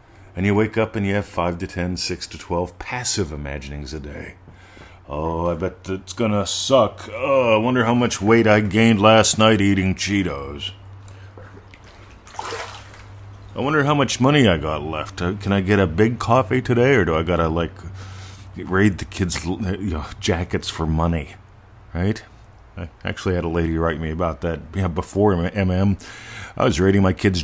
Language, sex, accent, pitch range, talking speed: English, male, American, 85-105 Hz, 170 wpm